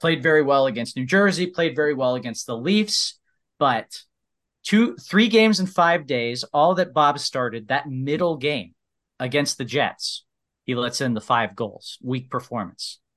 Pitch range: 115-150 Hz